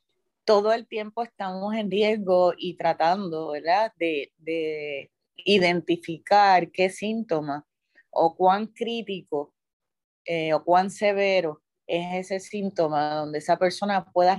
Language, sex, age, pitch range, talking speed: Spanish, female, 30-49, 160-200 Hz, 115 wpm